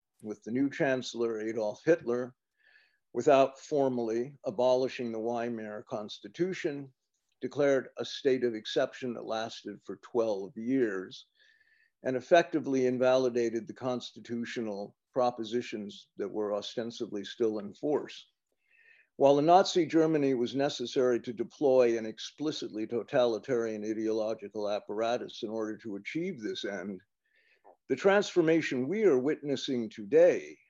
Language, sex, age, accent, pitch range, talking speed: English, male, 50-69, American, 120-155 Hz, 115 wpm